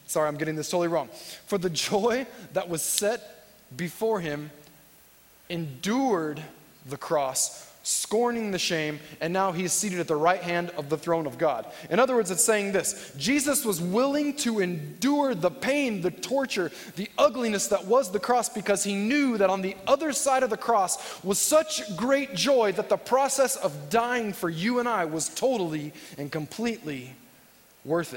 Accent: American